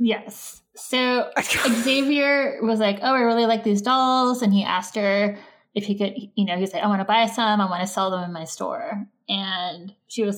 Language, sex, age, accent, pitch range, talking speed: English, female, 20-39, American, 195-230 Hz, 220 wpm